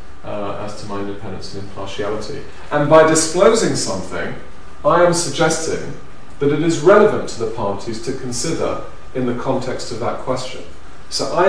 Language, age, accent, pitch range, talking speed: English, 40-59, British, 105-135 Hz, 160 wpm